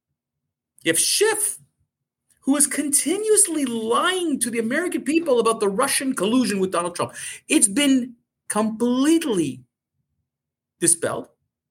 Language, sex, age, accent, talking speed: English, male, 40-59, American, 110 wpm